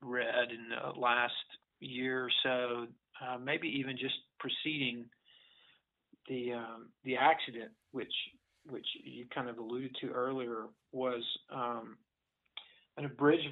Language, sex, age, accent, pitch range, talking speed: English, male, 40-59, American, 120-140 Hz, 125 wpm